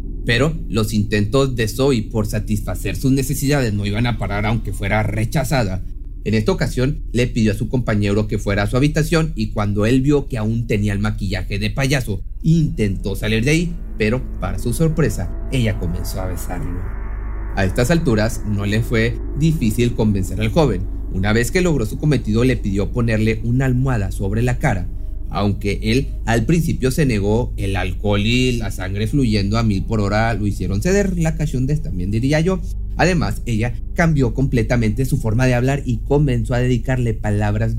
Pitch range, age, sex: 100-130 Hz, 30-49, male